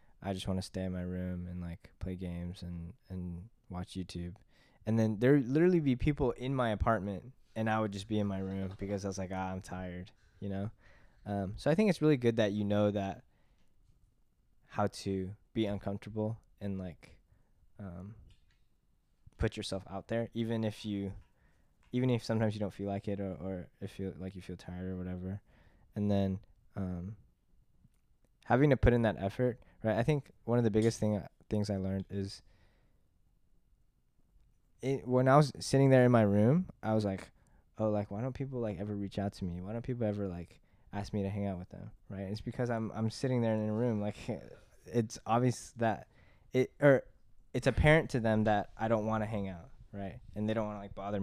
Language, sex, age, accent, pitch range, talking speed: English, male, 20-39, American, 95-115 Hz, 205 wpm